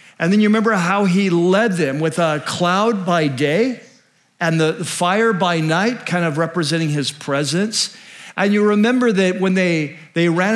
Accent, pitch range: American, 160-205 Hz